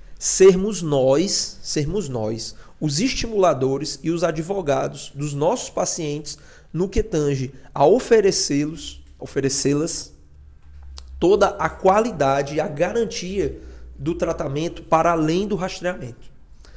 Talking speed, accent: 105 wpm, Brazilian